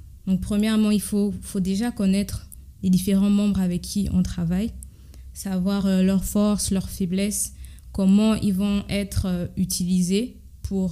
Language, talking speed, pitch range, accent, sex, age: French, 150 wpm, 185-205 Hz, French, female, 20-39